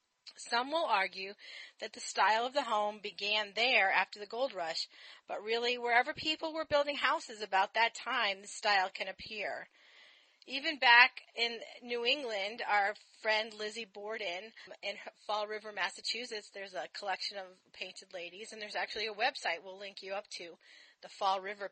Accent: American